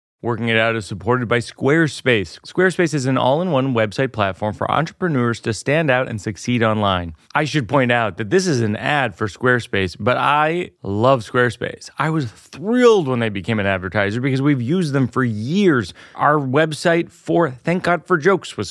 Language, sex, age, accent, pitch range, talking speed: English, male, 30-49, American, 115-175 Hz, 185 wpm